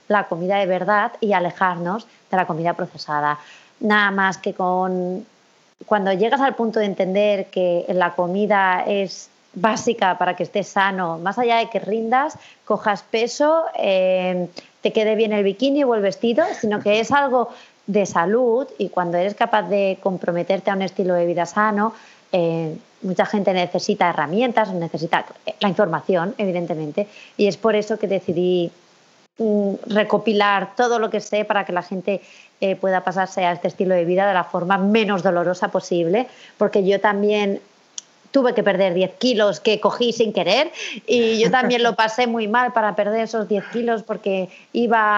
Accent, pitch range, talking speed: Spanish, 185-225 Hz, 170 wpm